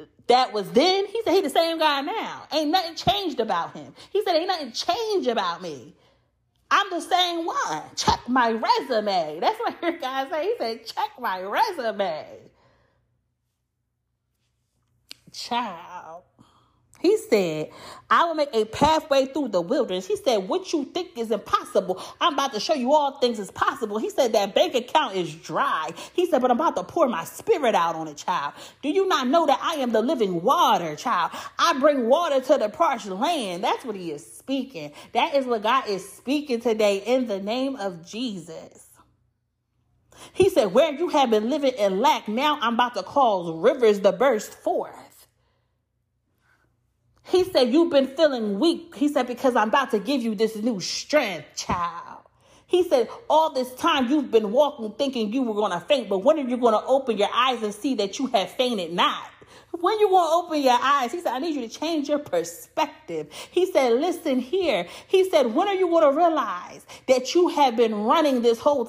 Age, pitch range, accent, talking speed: 30-49, 215-320 Hz, American, 195 wpm